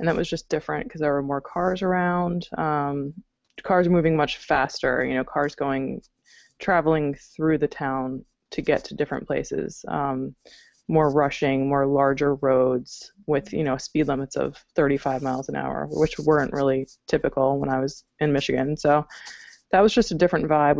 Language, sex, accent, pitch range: English, female, American, 140-160 Hz